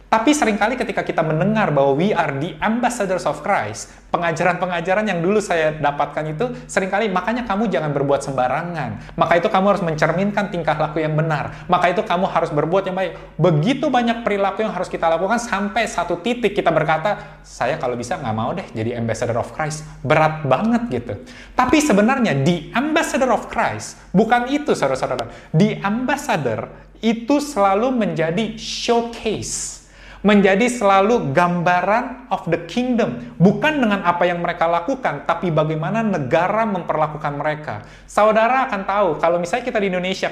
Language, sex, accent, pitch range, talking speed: Indonesian, male, native, 165-225 Hz, 155 wpm